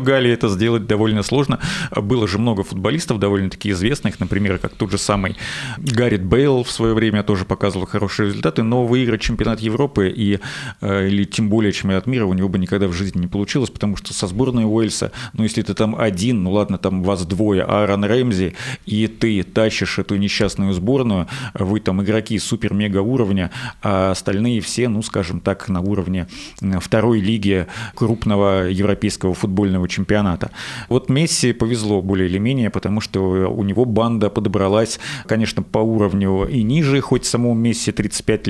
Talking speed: 160 wpm